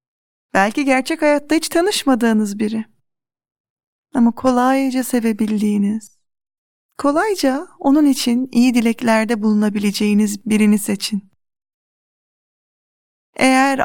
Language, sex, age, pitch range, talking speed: Turkish, female, 40-59, 205-255 Hz, 80 wpm